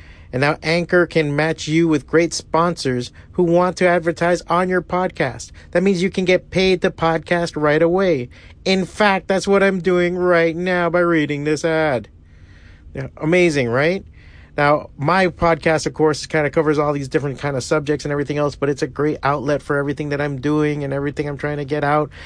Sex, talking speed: male, 200 wpm